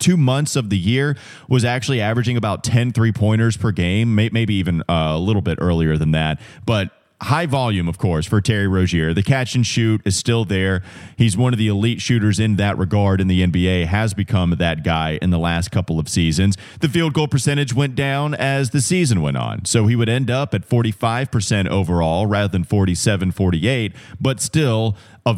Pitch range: 100-125 Hz